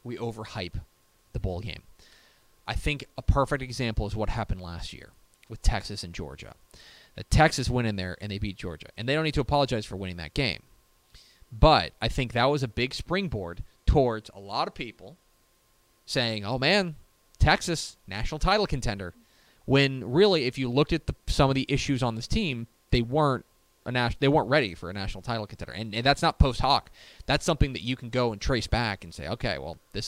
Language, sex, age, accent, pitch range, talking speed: English, male, 30-49, American, 105-140 Hz, 205 wpm